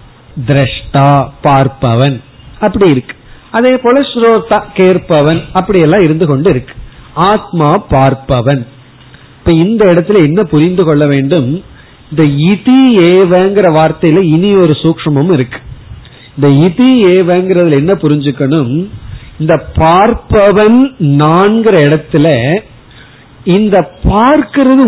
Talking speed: 70 wpm